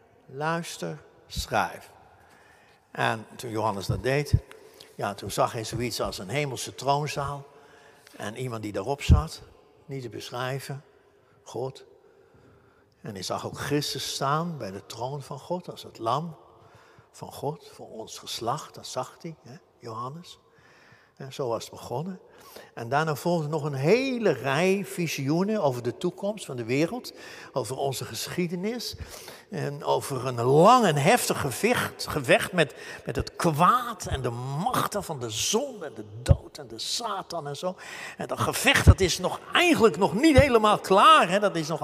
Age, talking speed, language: 60-79, 155 wpm, Dutch